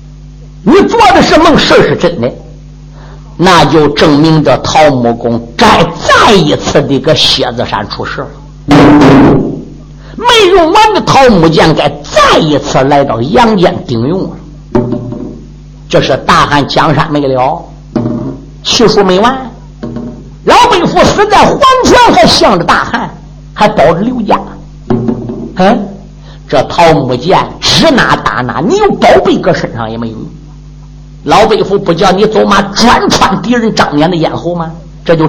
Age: 50-69